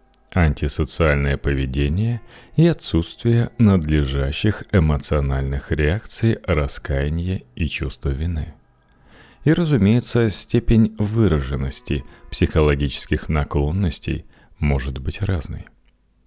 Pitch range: 75-105 Hz